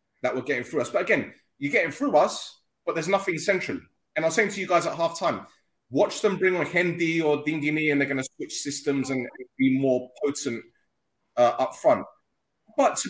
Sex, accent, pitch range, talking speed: male, British, 130-160 Hz, 215 wpm